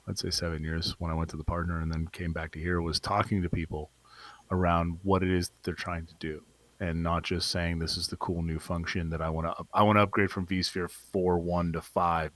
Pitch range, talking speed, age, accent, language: 85-100 Hz, 255 wpm, 30-49, American, English